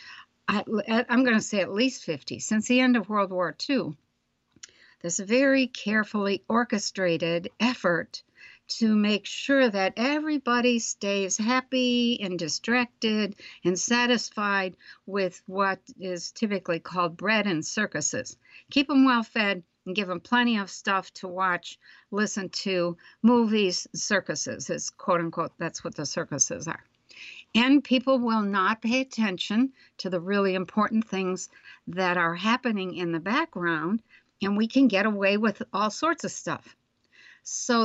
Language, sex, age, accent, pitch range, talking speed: English, female, 60-79, American, 185-240 Hz, 140 wpm